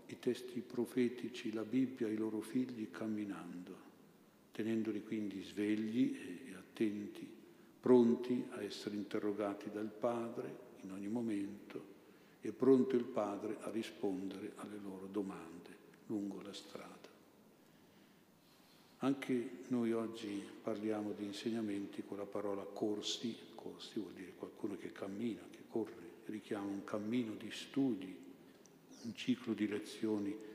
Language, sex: Italian, male